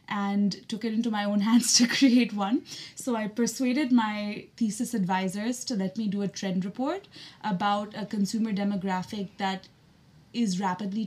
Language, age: English, 20-39